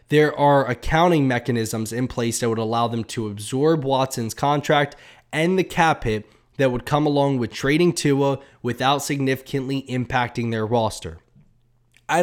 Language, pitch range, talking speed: English, 120-145 Hz, 150 wpm